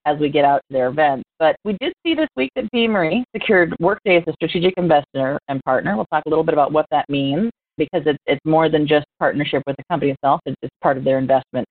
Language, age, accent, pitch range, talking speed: English, 30-49, American, 145-190 Hz, 245 wpm